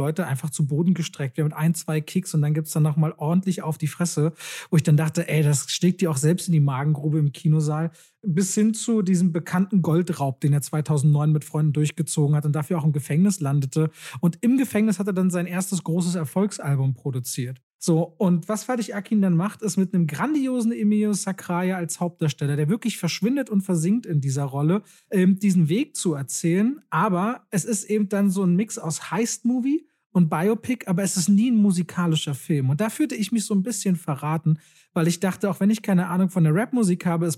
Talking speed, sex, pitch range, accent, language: 215 wpm, male, 160-205 Hz, German, German